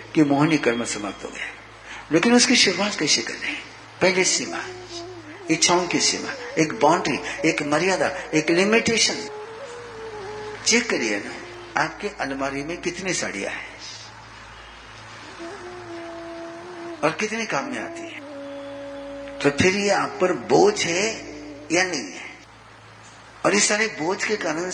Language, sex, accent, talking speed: Hindi, male, native, 130 wpm